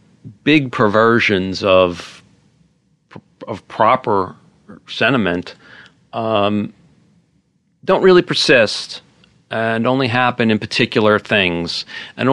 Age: 40-59